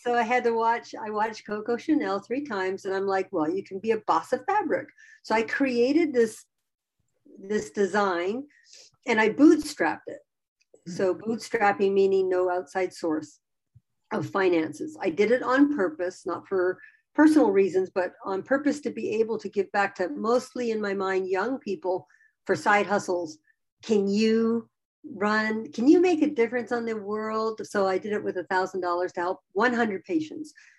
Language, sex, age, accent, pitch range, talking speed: English, female, 50-69, American, 185-245 Hz, 175 wpm